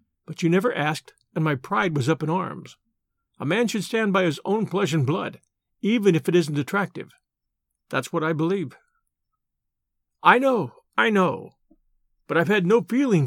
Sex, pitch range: male, 155-205 Hz